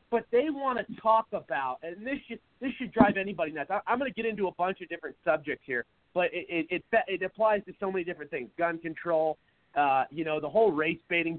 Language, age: English, 30-49